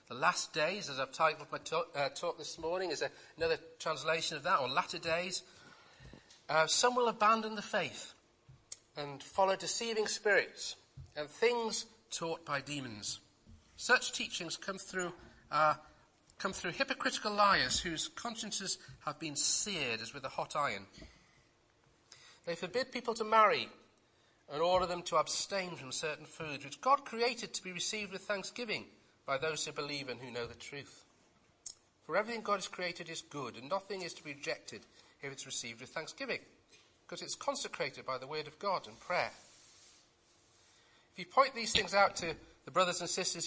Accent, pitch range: British, 140-200 Hz